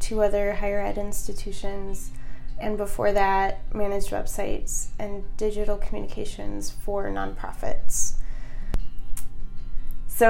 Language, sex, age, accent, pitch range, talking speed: English, female, 20-39, American, 190-215 Hz, 95 wpm